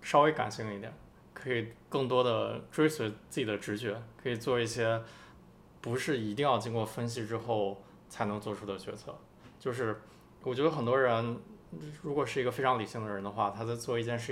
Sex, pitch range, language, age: male, 105-125 Hz, Chinese, 20-39